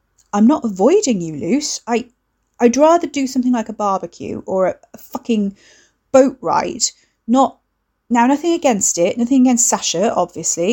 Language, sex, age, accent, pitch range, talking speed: English, female, 30-49, British, 180-240 Hz, 160 wpm